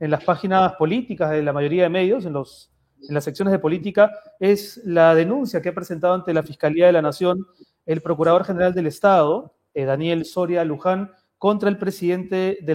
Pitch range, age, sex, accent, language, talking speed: 160-205 Hz, 30-49, male, Argentinian, Spanish, 190 wpm